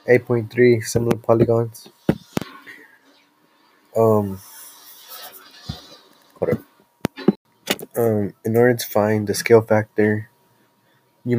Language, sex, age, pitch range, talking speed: English, male, 20-39, 105-115 Hz, 70 wpm